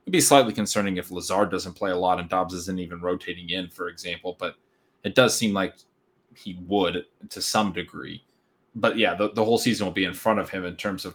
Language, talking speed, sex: English, 230 wpm, male